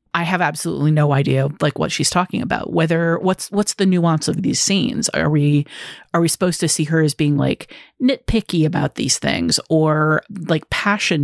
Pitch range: 150-180 Hz